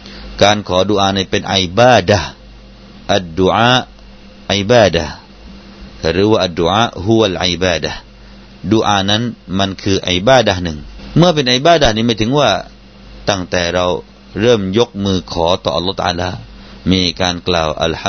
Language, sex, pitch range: Thai, male, 90-120 Hz